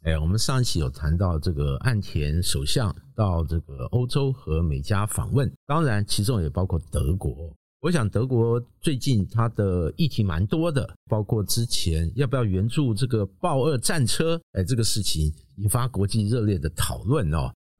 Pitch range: 90-130 Hz